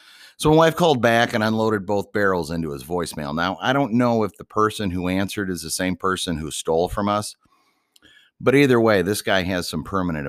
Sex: male